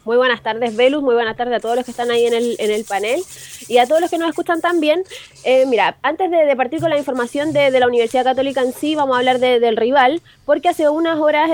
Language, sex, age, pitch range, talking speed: Spanish, female, 20-39, 245-320 Hz, 260 wpm